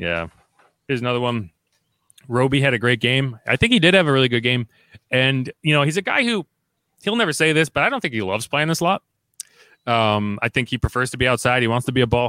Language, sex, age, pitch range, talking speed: English, male, 30-49, 110-135 Hz, 255 wpm